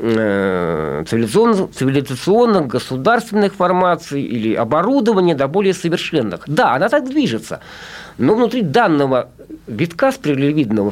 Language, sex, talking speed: Russian, male, 95 wpm